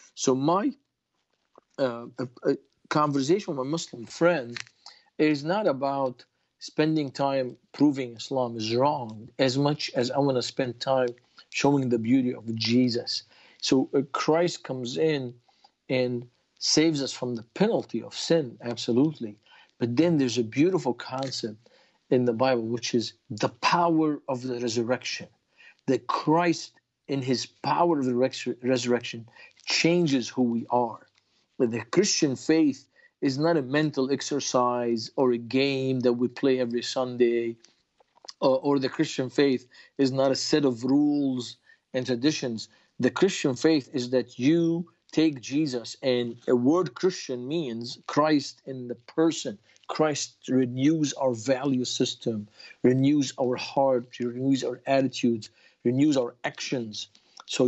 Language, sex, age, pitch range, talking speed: English, male, 50-69, 120-145 Hz, 140 wpm